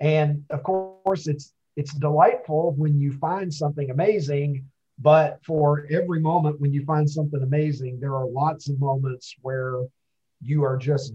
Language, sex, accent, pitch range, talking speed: English, male, American, 130-155 Hz, 155 wpm